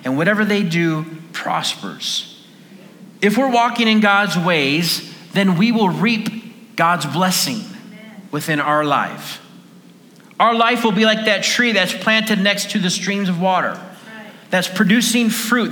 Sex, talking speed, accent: male, 145 wpm, American